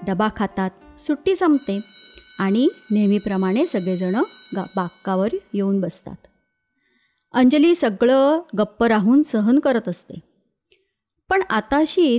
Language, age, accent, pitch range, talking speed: Marathi, 30-49, native, 205-270 Hz, 100 wpm